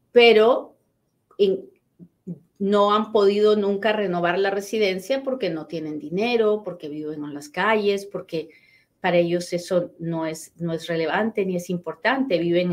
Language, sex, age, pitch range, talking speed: Spanish, female, 40-59, 175-255 Hz, 135 wpm